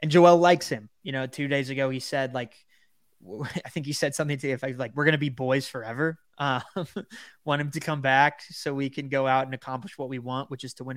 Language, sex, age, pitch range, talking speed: English, male, 20-39, 130-150 Hz, 255 wpm